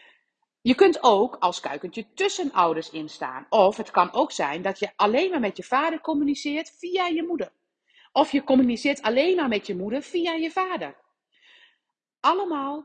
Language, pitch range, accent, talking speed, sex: Dutch, 195-300 Hz, Dutch, 170 wpm, female